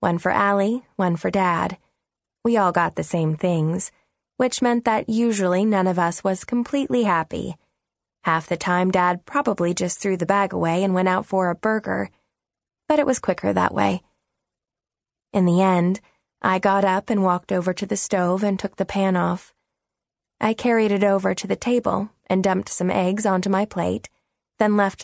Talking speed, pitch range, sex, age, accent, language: 185 wpm, 180-220 Hz, female, 20-39, American, English